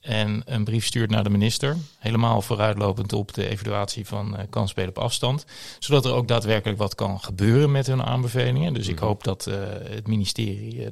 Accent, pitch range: Dutch, 105-125 Hz